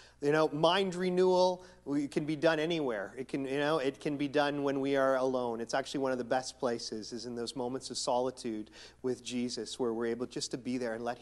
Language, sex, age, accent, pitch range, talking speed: English, male, 40-59, American, 130-155 Hz, 235 wpm